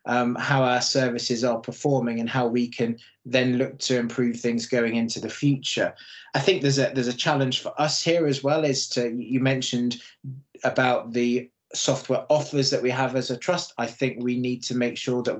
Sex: male